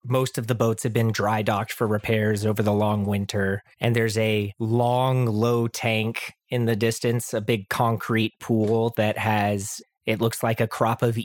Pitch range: 105-125 Hz